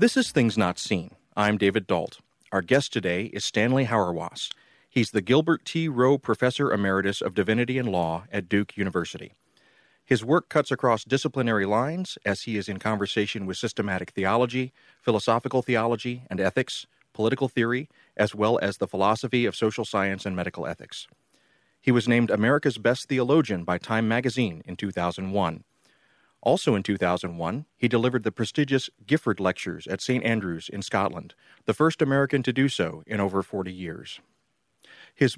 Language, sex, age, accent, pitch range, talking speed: English, male, 40-59, American, 100-130 Hz, 160 wpm